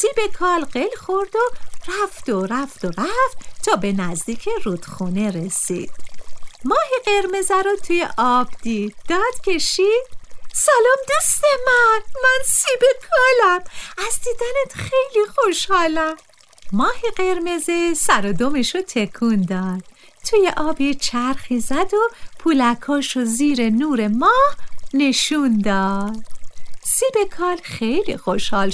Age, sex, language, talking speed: 40-59, female, Persian, 115 wpm